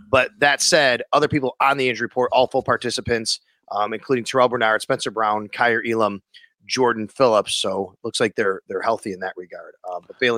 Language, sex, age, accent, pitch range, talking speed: English, male, 30-49, American, 110-140 Hz, 200 wpm